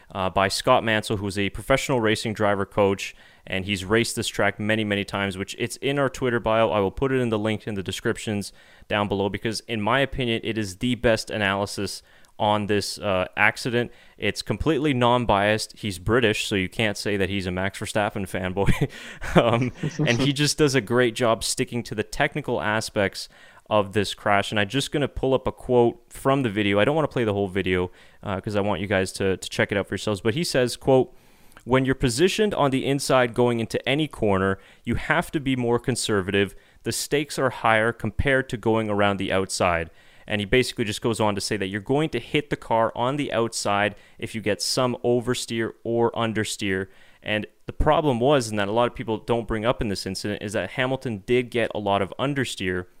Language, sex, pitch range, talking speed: English, male, 100-125 Hz, 215 wpm